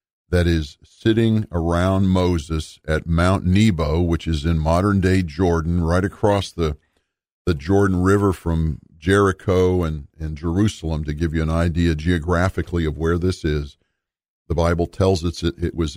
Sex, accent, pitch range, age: male, American, 80-95 Hz, 50-69